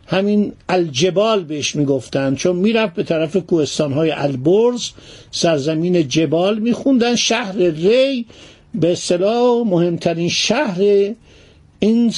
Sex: male